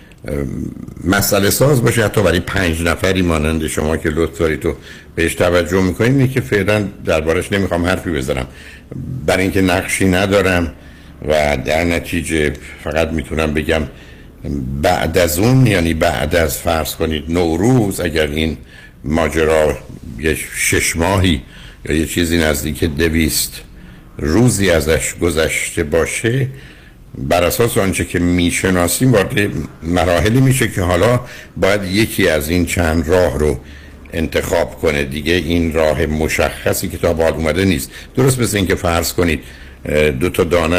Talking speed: 140 wpm